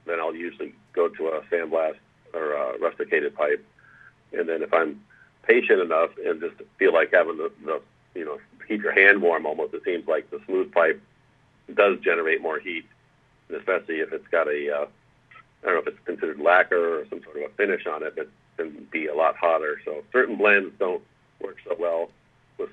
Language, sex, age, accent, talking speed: English, male, 50-69, American, 205 wpm